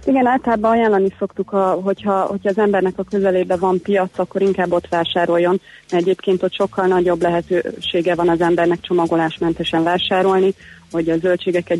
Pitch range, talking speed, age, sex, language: 170-185 Hz, 145 wpm, 30-49, female, Hungarian